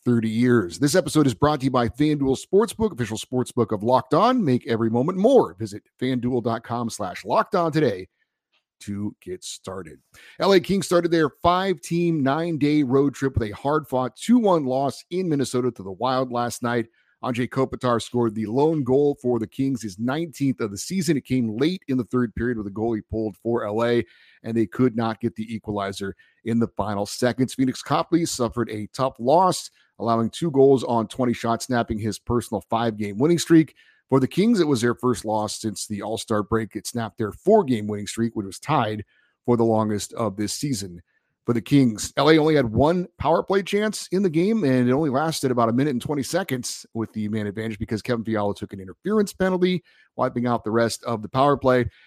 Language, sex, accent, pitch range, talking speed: English, male, American, 110-145 Hz, 200 wpm